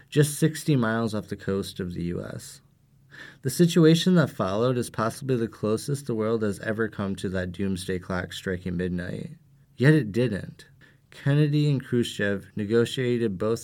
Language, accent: English, American